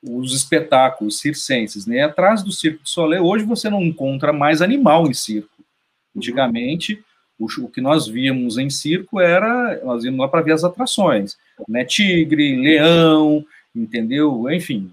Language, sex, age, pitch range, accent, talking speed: Portuguese, male, 40-59, 130-190 Hz, Brazilian, 150 wpm